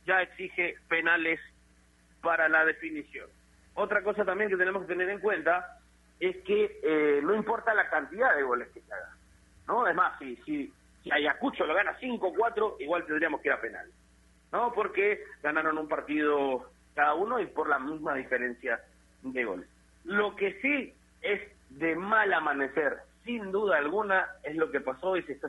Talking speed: 180 wpm